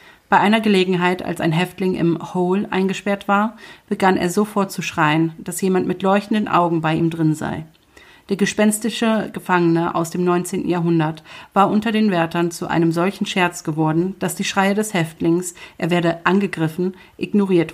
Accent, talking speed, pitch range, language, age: German, 165 wpm, 165-195 Hz, German, 40-59